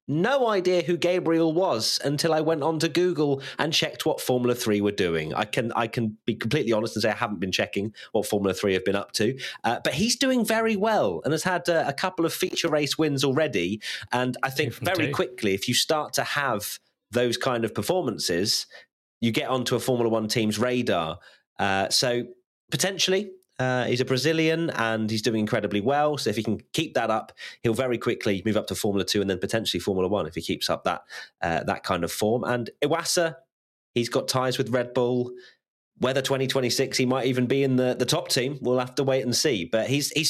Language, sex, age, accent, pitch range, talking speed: English, male, 30-49, British, 110-150 Hz, 220 wpm